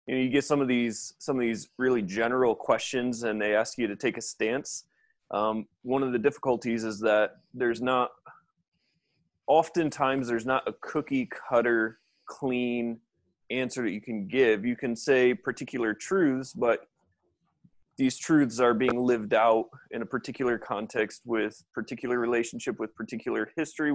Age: 20-39